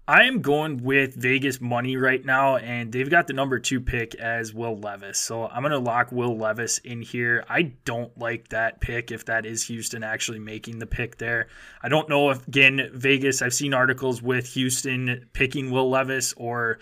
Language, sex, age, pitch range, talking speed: English, male, 20-39, 115-130 Hz, 200 wpm